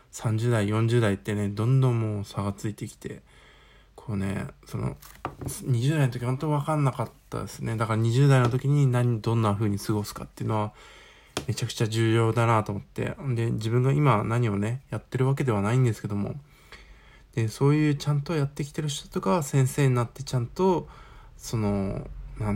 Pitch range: 105-140 Hz